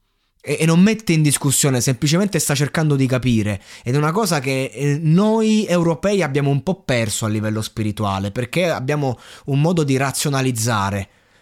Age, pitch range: 20-39, 115-155 Hz